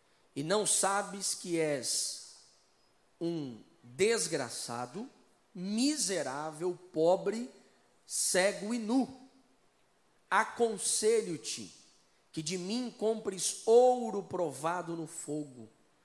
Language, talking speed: Portuguese, 80 wpm